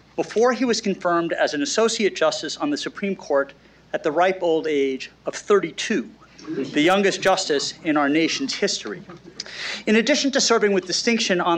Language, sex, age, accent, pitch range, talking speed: English, male, 50-69, American, 155-215 Hz, 170 wpm